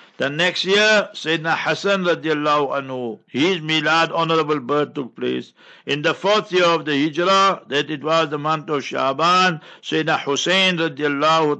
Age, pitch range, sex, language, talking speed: 60-79, 145-170 Hz, male, English, 155 wpm